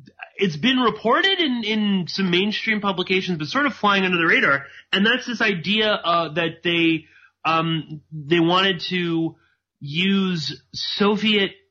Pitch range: 140-185 Hz